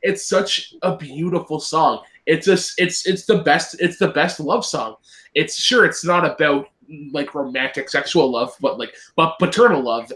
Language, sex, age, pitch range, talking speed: English, male, 20-39, 130-175 Hz, 175 wpm